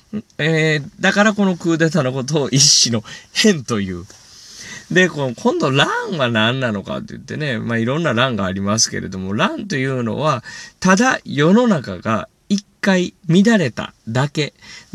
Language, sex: Japanese, male